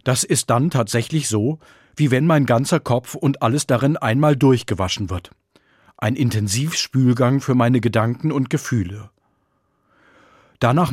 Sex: male